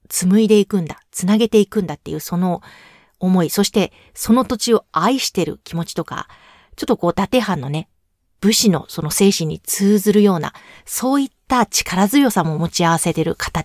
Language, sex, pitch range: Japanese, female, 175-215 Hz